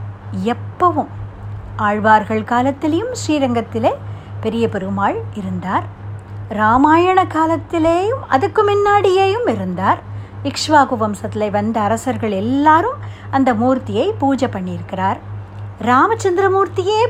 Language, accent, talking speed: Tamil, native, 75 wpm